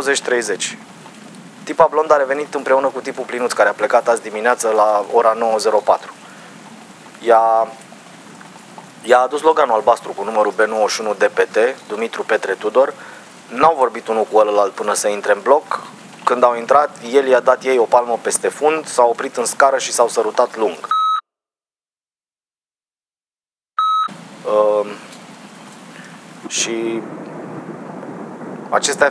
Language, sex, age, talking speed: Romanian, male, 30-49, 125 wpm